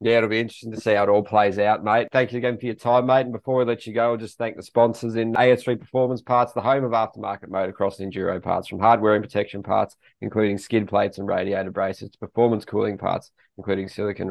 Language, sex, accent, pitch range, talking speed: English, male, Australian, 95-115 Hz, 250 wpm